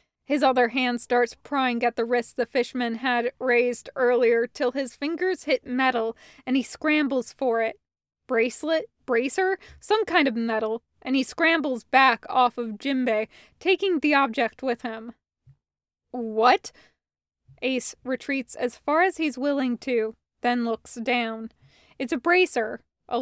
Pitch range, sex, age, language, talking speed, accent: 230-270 Hz, female, 20-39, English, 145 wpm, American